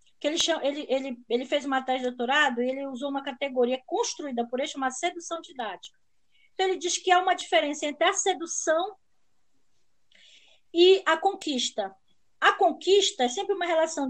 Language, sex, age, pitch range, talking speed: Portuguese, female, 20-39, 240-340 Hz, 160 wpm